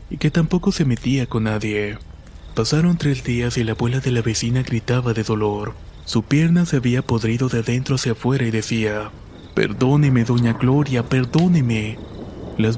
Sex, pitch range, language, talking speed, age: male, 110-130 Hz, Spanish, 165 wpm, 20-39